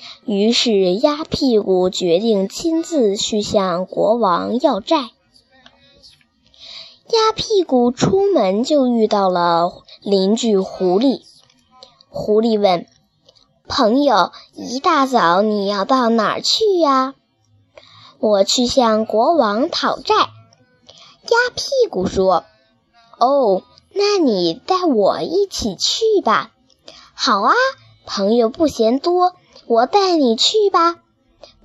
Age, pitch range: 10-29, 205-325 Hz